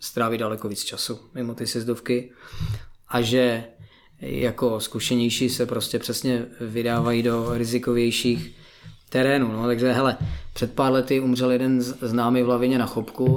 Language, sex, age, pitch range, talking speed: Czech, male, 20-39, 125-140 Hz, 140 wpm